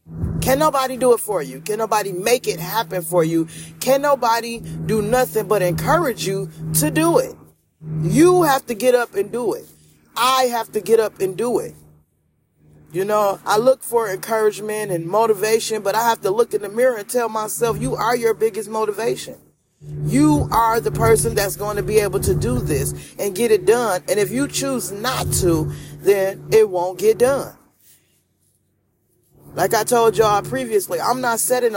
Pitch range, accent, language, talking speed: 170-230 Hz, American, English, 185 wpm